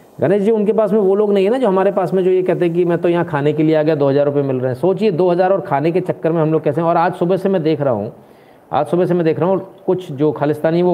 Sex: male